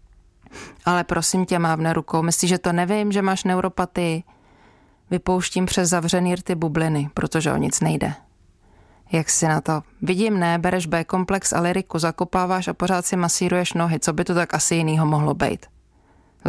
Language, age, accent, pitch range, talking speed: Czech, 20-39, native, 160-185 Hz, 165 wpm